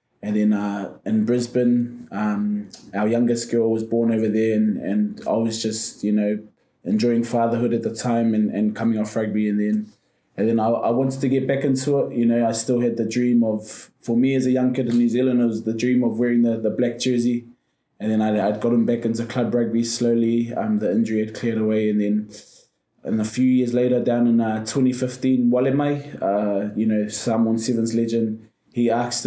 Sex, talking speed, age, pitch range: male, 220 wpm, 20-39, 105-120 Hz